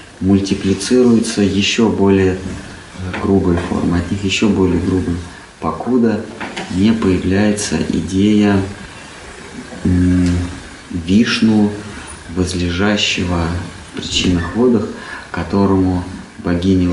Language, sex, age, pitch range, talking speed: Russian, male, 30-49, 90-110 Hz, 70 wpm